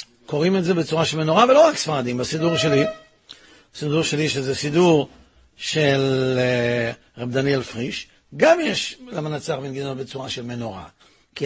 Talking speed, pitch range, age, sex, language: 145 wpm, 135-200 Hz, 60-79, male, Hebrew